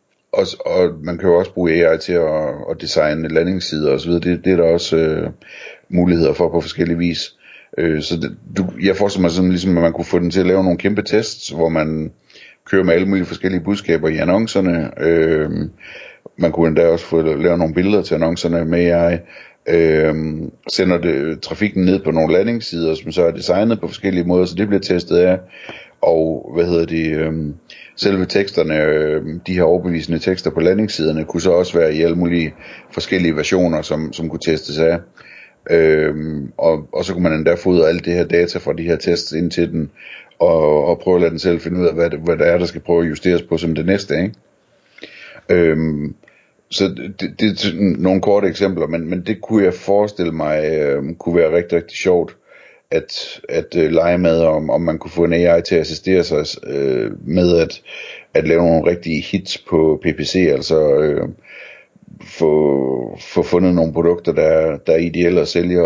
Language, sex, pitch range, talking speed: Danish, male, 80-90 Hz, 200 wpm